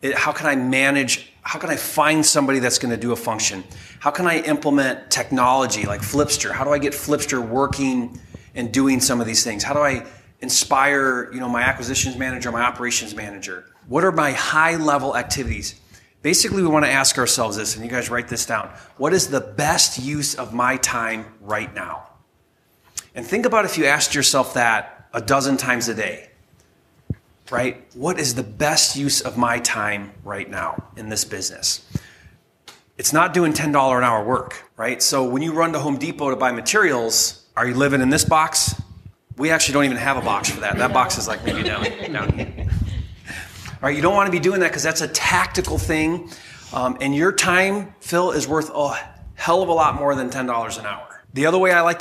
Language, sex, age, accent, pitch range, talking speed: English, male, 30-49, American, 120-150 Hz, 205 wpm